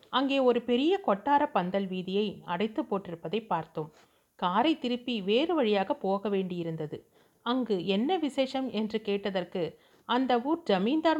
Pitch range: 195-255 Hz